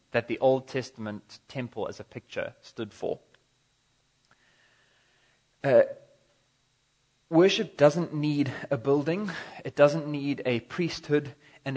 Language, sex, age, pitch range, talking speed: English, male, 30-49, 115-140 Hz, 110 wpm